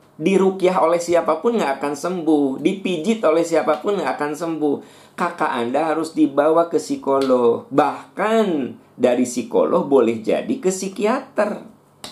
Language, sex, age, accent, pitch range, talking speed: Indonesian, male, 50-69, native, 120-185 Hz, 125 wpm